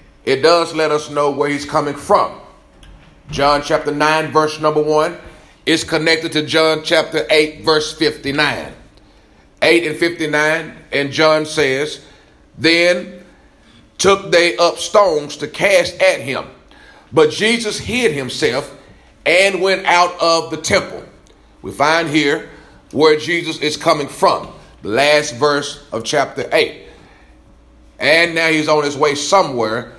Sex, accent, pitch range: male, American, 150-195 Hz